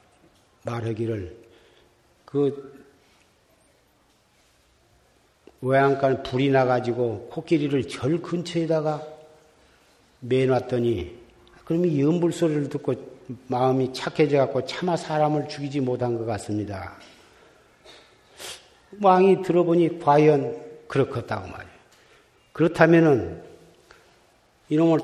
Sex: male